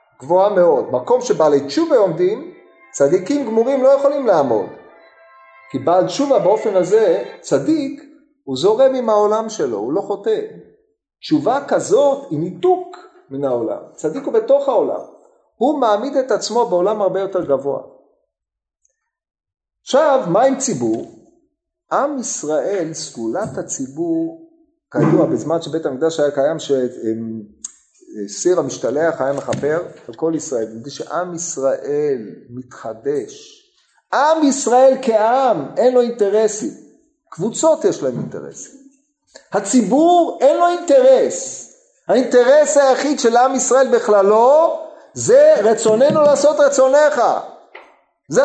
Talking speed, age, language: 115 wpm, 40-59, Hebrew